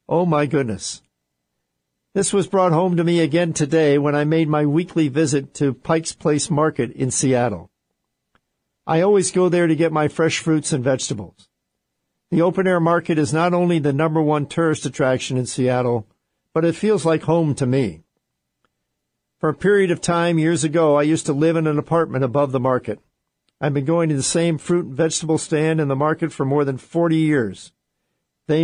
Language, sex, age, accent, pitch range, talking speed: English, male, 50-69, American, 135-170 Hz, 190 wpm